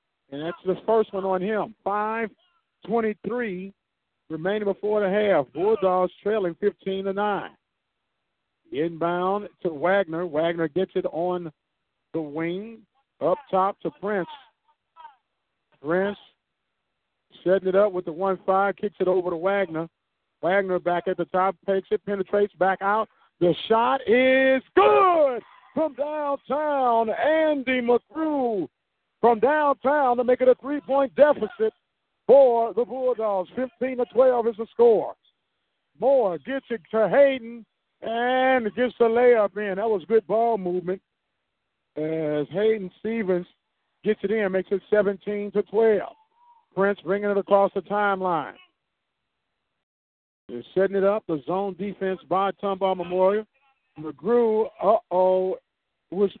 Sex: male